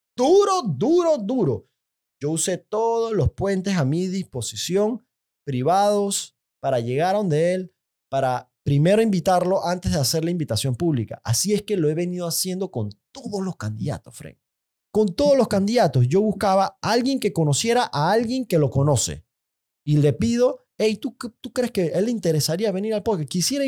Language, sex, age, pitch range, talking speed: Spanish, male, 30-49, 130-195 Hz, 170 wpm